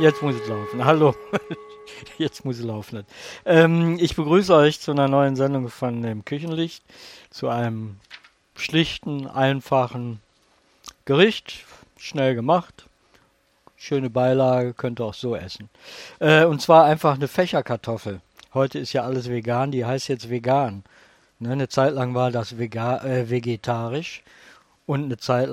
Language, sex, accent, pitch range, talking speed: German, male, German, 120-155 Hz, 140 wpm